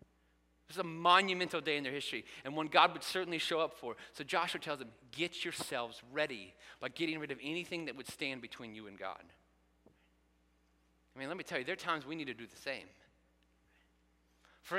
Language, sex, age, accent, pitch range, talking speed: English, male, 30-49, American, 105-165 Hz, 205 wpm